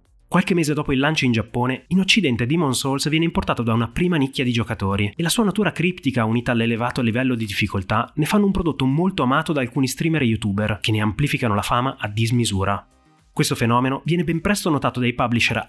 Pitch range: 115-150 Hz